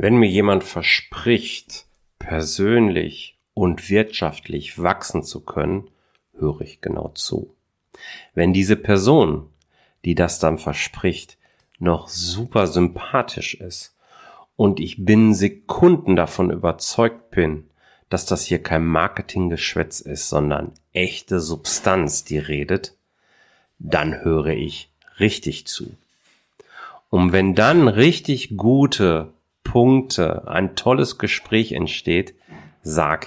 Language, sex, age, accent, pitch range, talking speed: German, male, 40-59, German, 80-115 Hz, 105 wpm